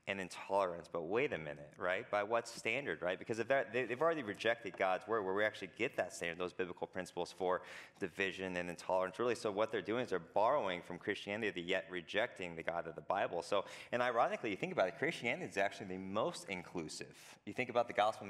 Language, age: English, 30-49